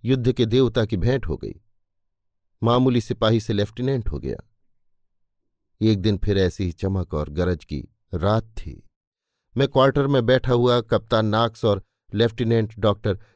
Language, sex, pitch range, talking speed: Hindi, male, 90-120 Hz, 155 wpm